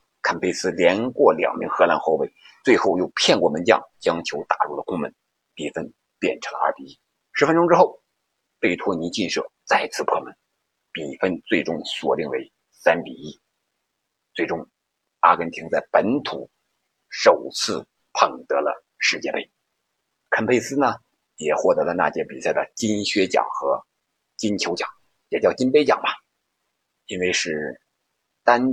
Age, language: 50-69, Chinese